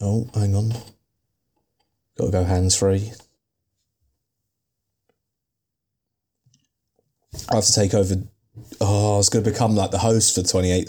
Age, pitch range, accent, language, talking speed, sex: 20-39, 90-110 Hz, British, English, 120 wpm, male